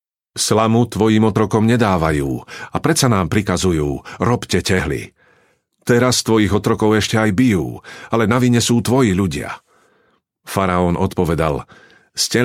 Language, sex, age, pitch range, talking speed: Slovak, male, 50-69, 90-120 Hz, 115 wpm